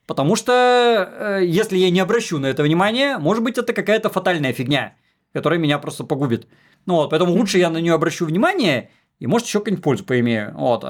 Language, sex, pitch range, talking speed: Russian, male, 145-195 Hz, 185 wpm